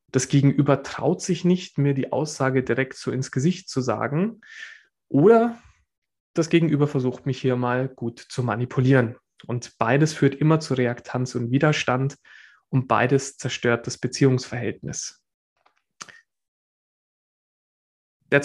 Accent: German